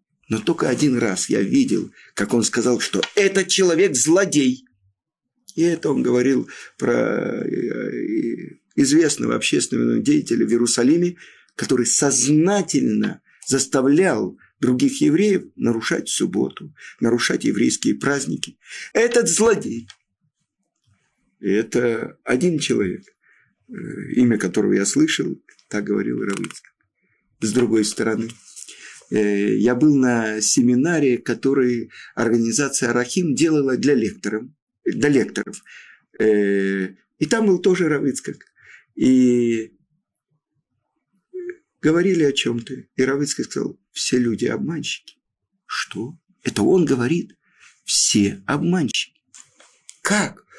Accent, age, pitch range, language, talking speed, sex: native, 50-69, 120-190 Hz, Russian, 95 wpm, male